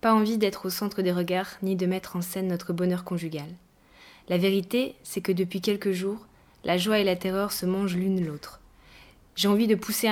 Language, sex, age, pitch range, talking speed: French, female, 20-39, 175-205 Hz, 210 wpm